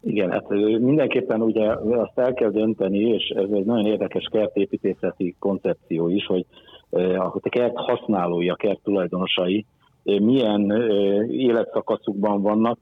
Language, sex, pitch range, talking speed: Hungarian, male, 95-110 Hz, 120 wpm